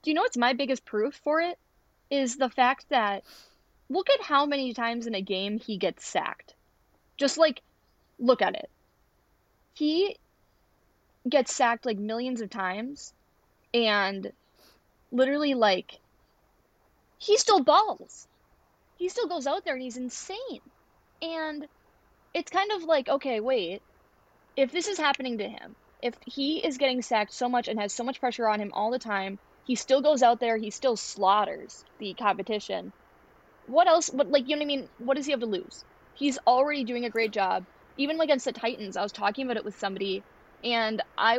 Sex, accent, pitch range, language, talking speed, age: female, American, 215-290 Hz, English, 180 wpm, 20-39